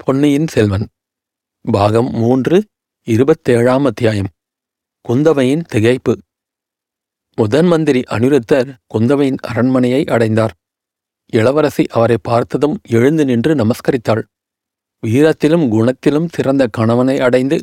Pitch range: 120-150 Hz